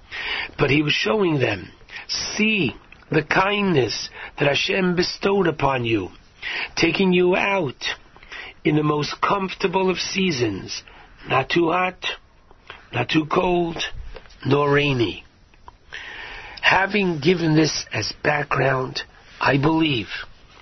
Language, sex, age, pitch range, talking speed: English, male, 60-79, 145-195 Hz, 110 wpm